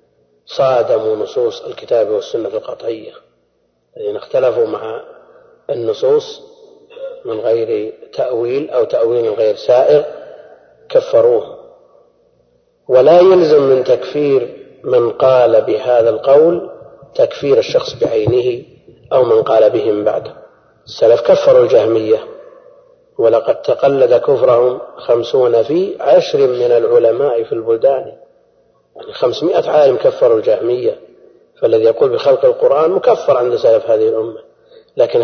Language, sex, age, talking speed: Arabic, male, 40-59, 105 wpm